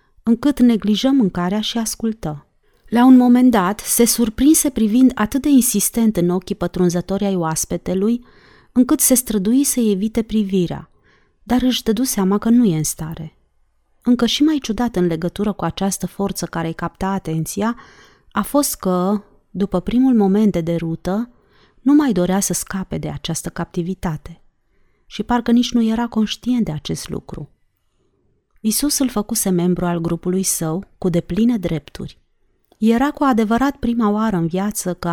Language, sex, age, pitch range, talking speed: Romanian, female, 30-49, 175-230 Hz, 155 wpm